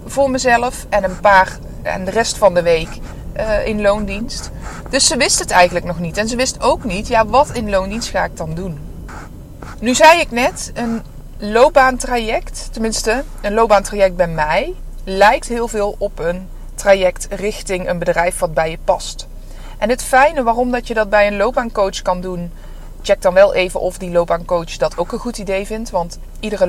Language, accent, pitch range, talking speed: Dutch, Dutch, 175-225 Hz, 190 wpm